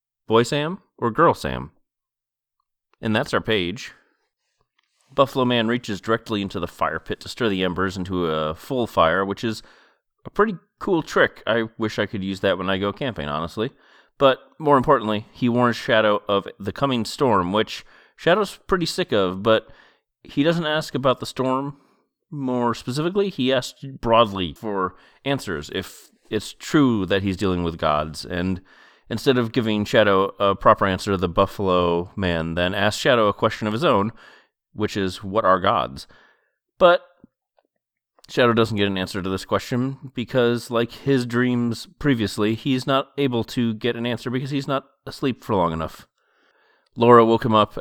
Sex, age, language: male, 30-49, English